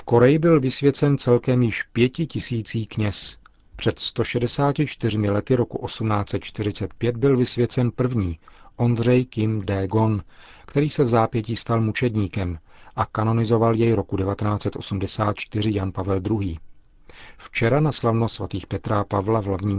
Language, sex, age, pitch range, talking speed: Czech, male, 40-59, 100-125 Hz, 125 wpm